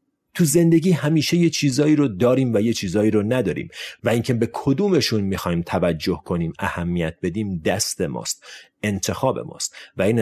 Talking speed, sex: 160 wpm, male